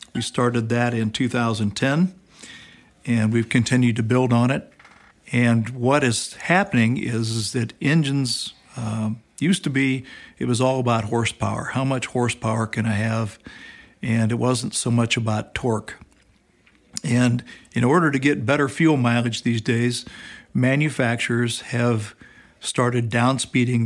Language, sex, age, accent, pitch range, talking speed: English, male, 60-79, American, 115-135 Hz, 140 wpm